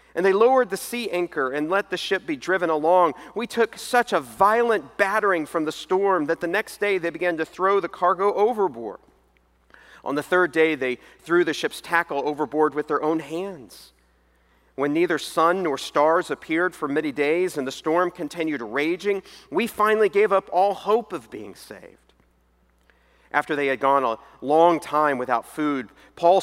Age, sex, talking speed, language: 40-59, male, 180 wpm, English